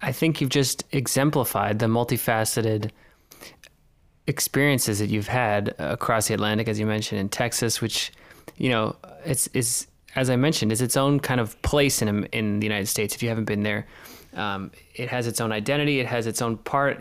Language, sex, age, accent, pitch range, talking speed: English, male, 20-39, American, 115-140 Hz, 190 wpm